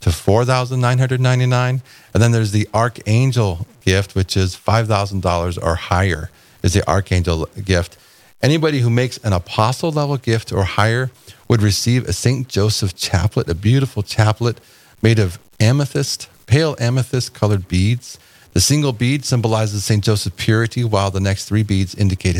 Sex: male